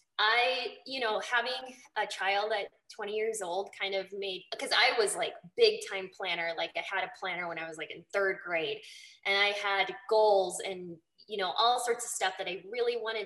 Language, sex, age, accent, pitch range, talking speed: English, female, 20-39, American, 195-250 Hz, 215 wpm